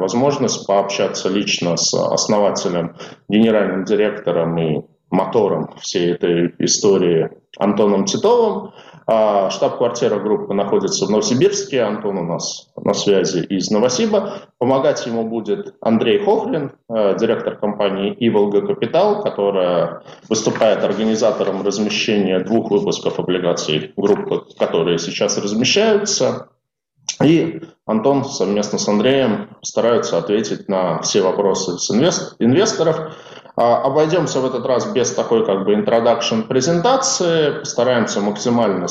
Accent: native